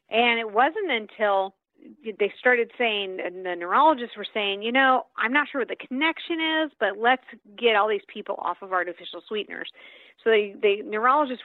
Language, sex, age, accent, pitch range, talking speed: English, female, 40-59, American, 195-275 Hz, 185 wpm